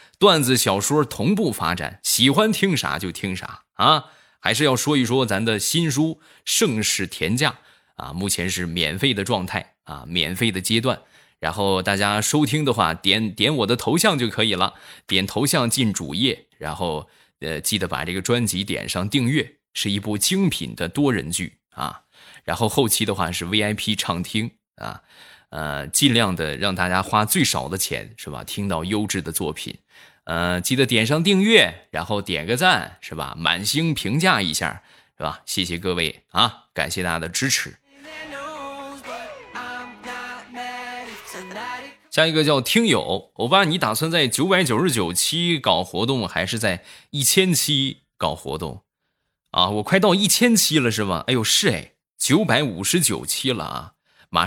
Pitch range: 95-155 Hz